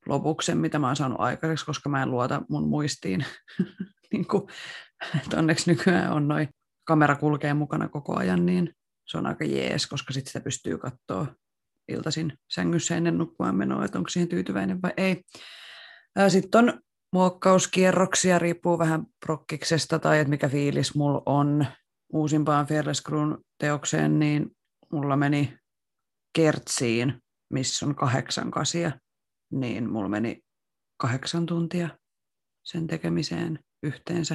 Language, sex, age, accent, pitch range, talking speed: Finnish, female, 30-49, native, 135-165 Hz, 130 wpm